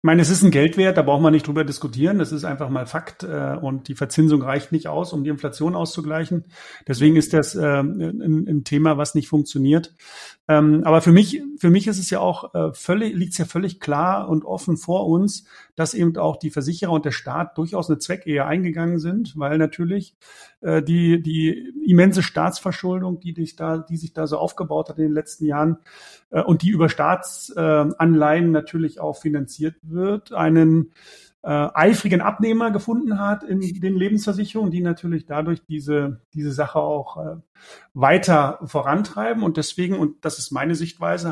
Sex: male